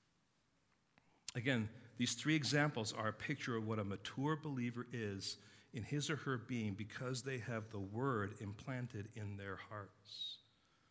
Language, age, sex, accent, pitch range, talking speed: English, 50-69, male, American, 115-145 Hz, 150 wpm